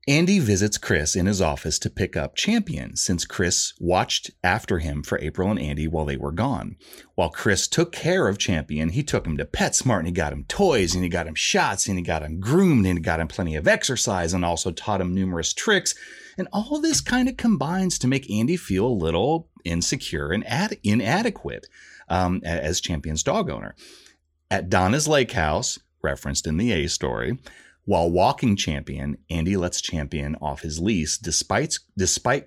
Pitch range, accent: 80-110 Hz, American